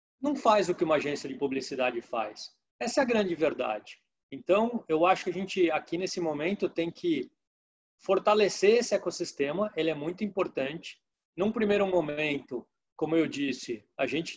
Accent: Brazilian